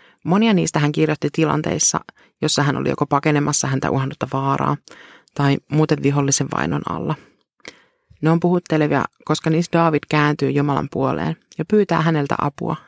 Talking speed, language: 145 wpm, Finnish